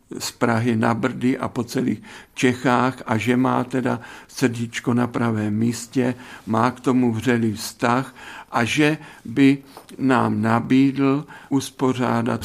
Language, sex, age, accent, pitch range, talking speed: Czech, male, 50-69, native, 120-130 Hz, 130 wpm